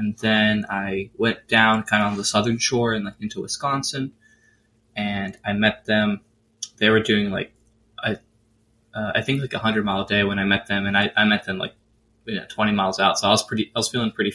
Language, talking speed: English, 235 wpm